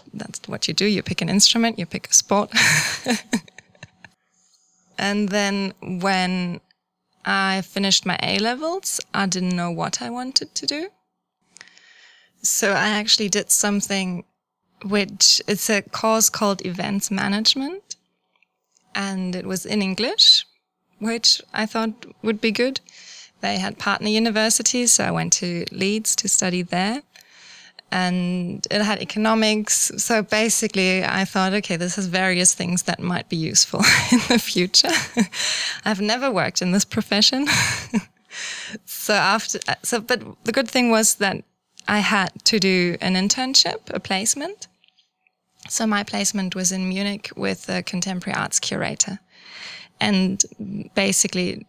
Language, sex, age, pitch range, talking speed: English, female, 20-39, 185-225 Hz, 135 wpm